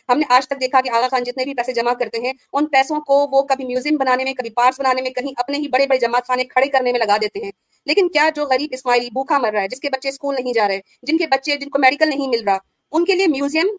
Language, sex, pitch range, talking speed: Urdu, female, 245-290 Hz, 295 wpm